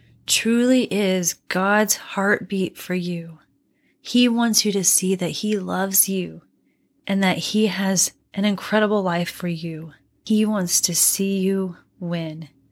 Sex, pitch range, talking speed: female, 170-225 Hz, 140 wpm